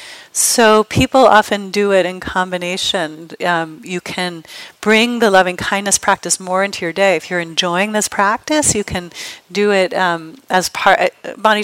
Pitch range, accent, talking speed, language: 170-215 Hz, American, 165 wpm, English